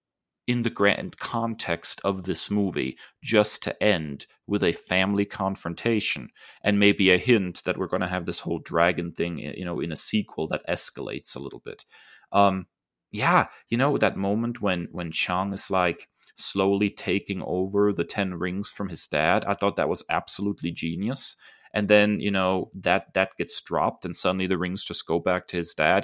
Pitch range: 85-105 Hz